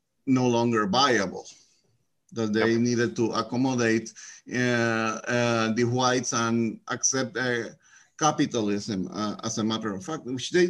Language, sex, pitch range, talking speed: English, male, 120-155 Hz, 135 wpm